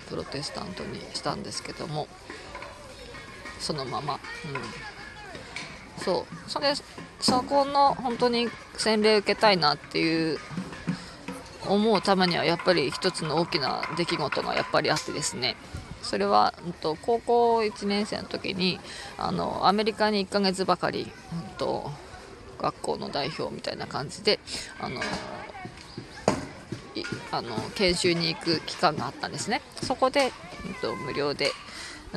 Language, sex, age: Japanese, female, 20-39